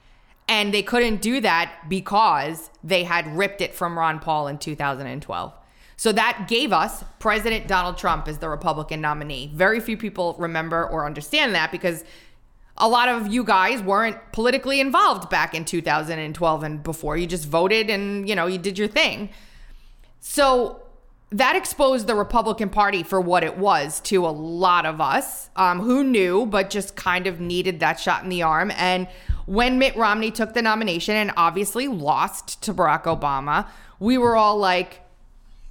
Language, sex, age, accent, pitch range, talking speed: English, female, 20-39, American, 165-225 Hz, 170 wpm